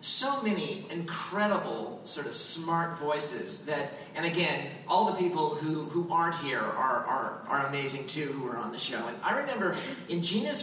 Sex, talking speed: male, 180 wpm